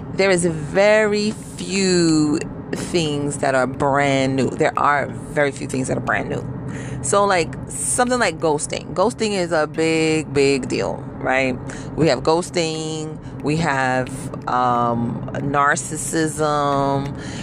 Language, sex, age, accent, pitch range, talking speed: English, female, 30-49, American, 135-155 Hz, 125 wpm